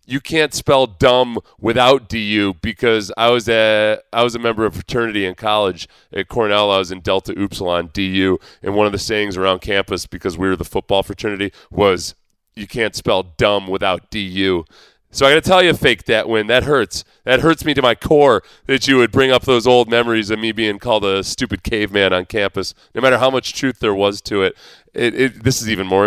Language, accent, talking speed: English, American, 220 wpm